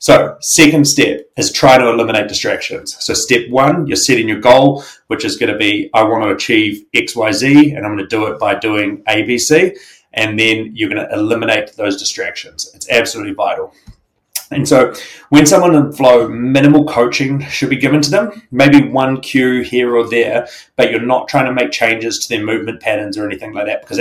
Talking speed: 200 wpm